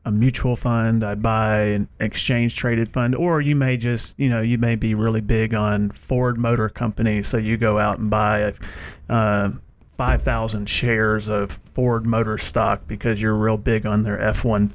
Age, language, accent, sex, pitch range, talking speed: 30-49, English, American, male, 110-130 Hz, 175 wpm